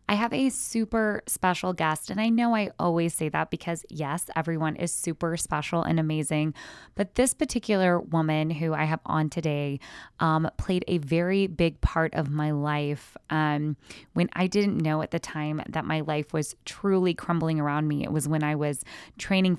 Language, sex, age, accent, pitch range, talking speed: English, female, 20-39, American, 150-180 Hz, 185 wpm